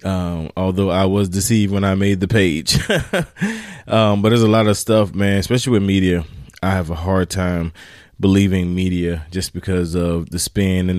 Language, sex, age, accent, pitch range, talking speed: English, male, 20-39, American, 90-105 Hz, 185 wpm